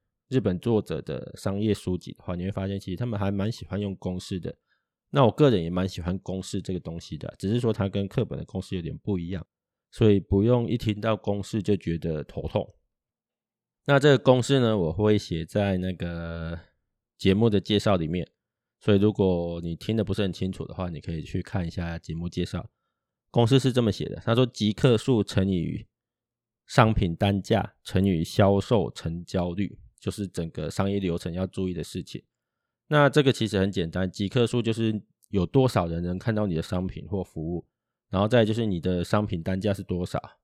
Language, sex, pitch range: Chinese, male, 90-110 Hz